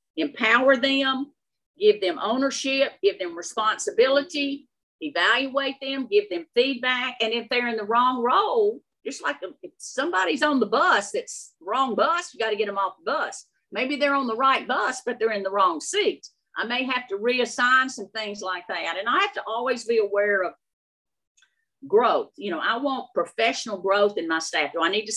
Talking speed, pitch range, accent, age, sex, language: 195 wpm, 215-285 Hz, American, 50-69, female, English